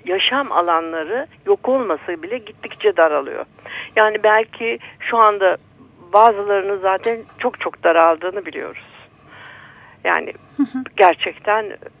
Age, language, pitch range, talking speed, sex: 60-79, Turkish, 200-280 Hz, 95 wpm, female